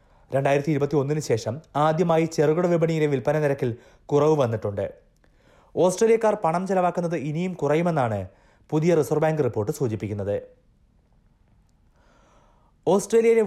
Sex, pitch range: male, 125-160 Hz